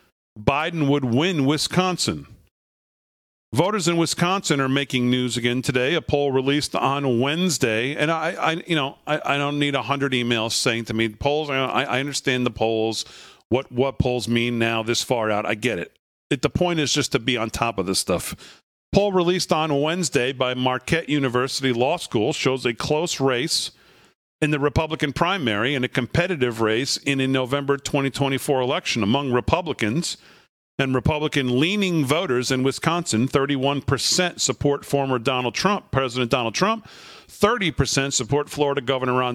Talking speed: 165 wpm